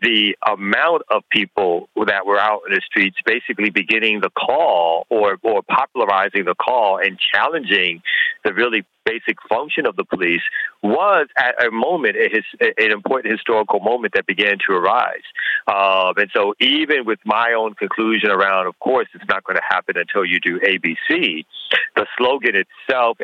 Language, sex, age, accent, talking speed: English, male, 40-59, American, 165 wpm